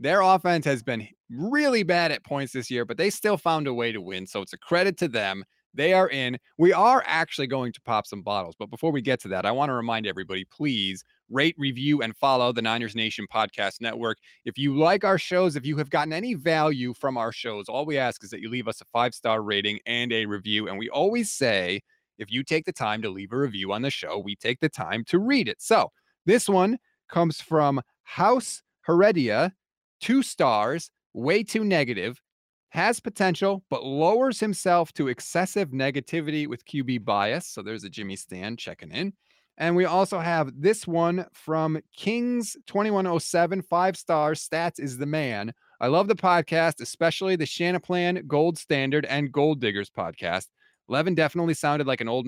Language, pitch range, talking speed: English, 120-175 Hz, 195 wpm